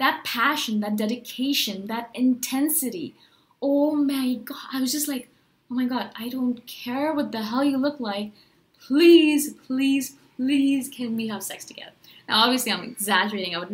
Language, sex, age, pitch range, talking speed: English, female, 20-39, 215-280 Hz, 170 wpm